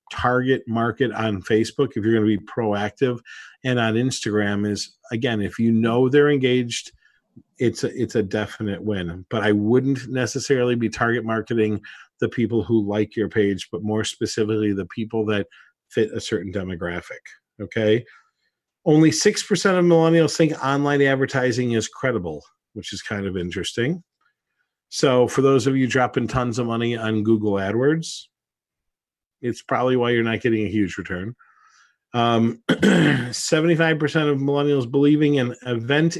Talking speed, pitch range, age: 155 wpm, 110-145 Hz, 50-69